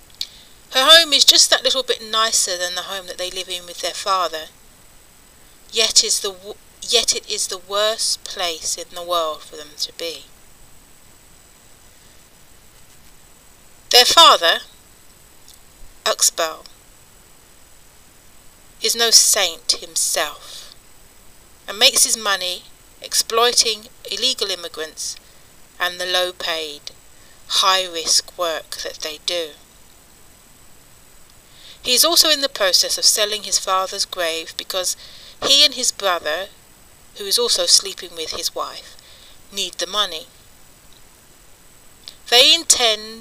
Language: English